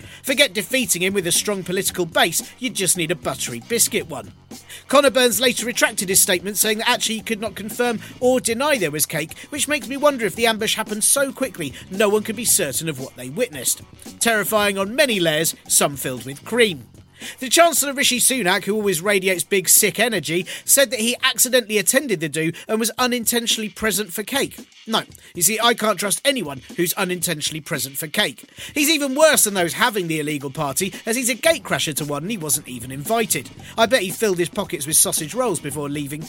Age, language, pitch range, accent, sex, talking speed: 40-59, English, 170-240 Hz, British, male, 210 wpm